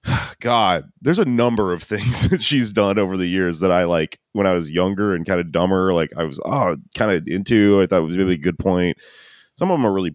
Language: English